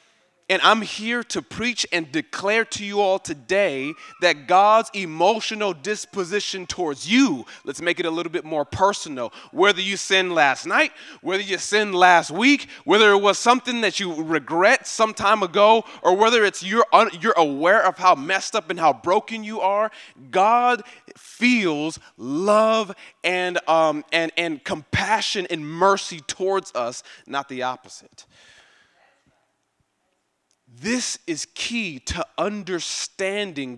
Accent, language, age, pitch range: American, English, 20-39, 155-210 Hz